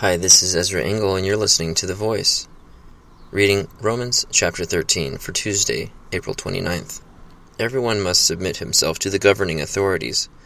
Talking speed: 155 wpm